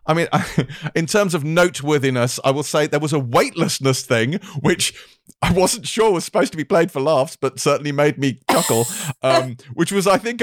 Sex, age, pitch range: male, 30-49, 125-165 Hz